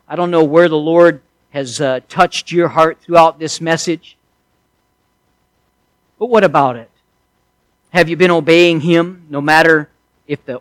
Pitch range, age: 140-170 Hz, 50-69